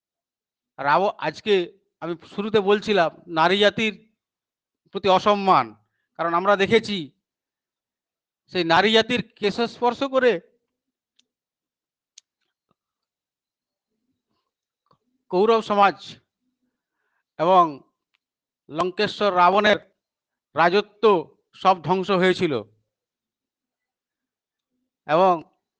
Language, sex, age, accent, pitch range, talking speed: Bengali, male, 50-69, native, 170-210 Hz, 50 wpm